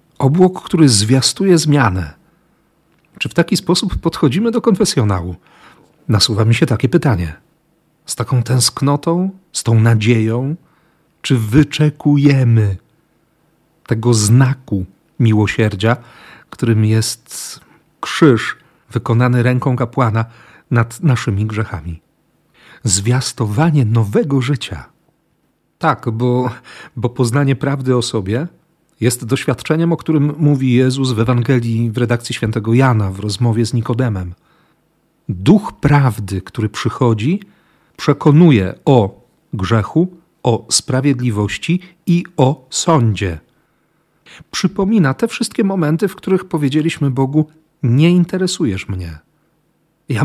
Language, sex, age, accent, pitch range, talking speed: Polish, male, 40-59, native, 115-160 Hz, 105 wpm